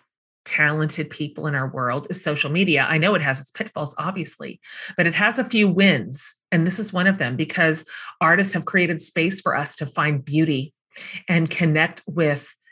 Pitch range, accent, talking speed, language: 150-175 Hz, American, 190 wpm, English